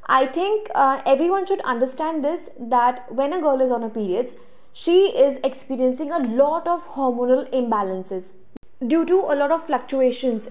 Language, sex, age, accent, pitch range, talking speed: Hindi, female, 20-39, native, 235-300 Hz, 165 wpm